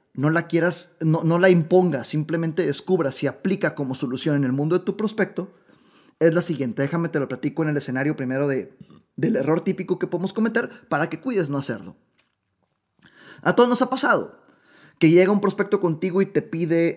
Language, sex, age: Spanish, male, 20-39